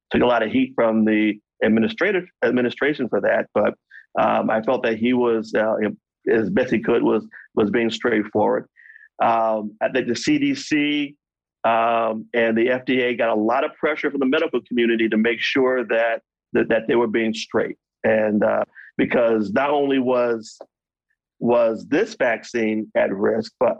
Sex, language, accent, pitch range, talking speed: male, English, American, 115-130 Hz, 165 wpm